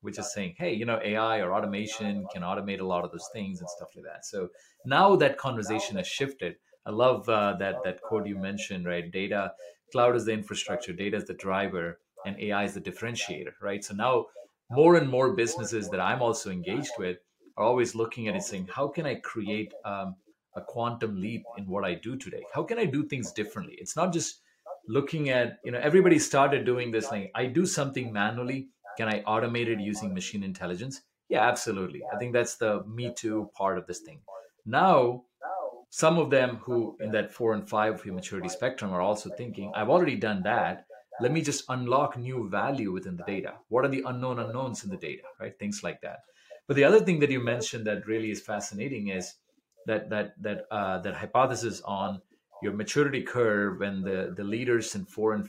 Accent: Indian